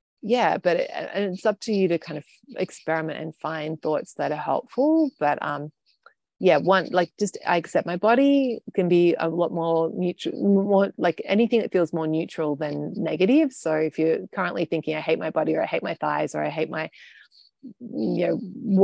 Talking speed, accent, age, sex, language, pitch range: 200 wpm, Australian, 30-49, female, English, 165-210 Hz